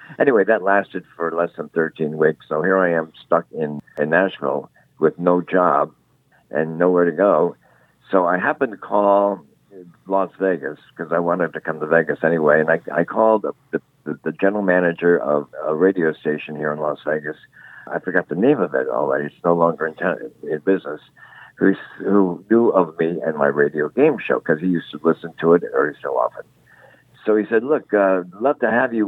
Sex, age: male, 60-79